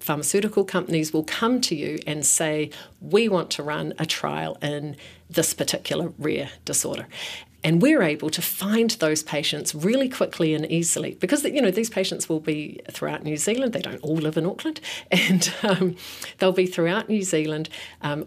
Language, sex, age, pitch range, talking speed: English, female, 40-59, 155-190 Hz, 175 wpm